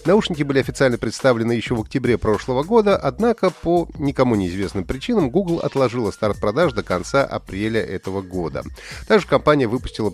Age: 30-49